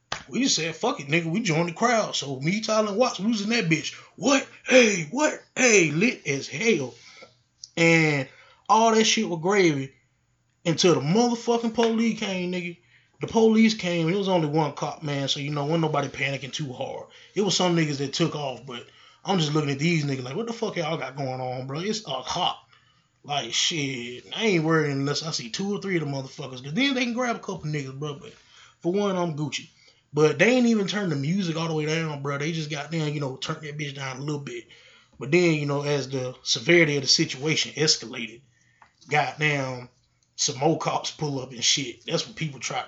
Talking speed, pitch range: 220 wpm, 140-185 Hz